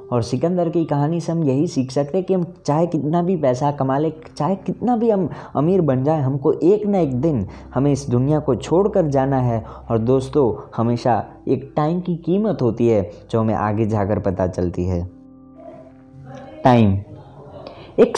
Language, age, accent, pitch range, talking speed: Hindi, 20-39, native, 120-180 Hz, 180 wpm